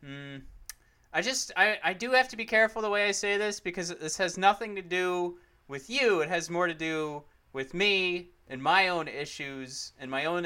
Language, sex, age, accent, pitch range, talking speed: English, male, 30-49, American, 135-185 Hz, 210 wpm